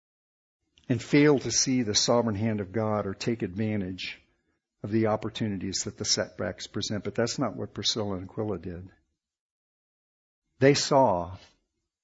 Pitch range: 105-135 Hz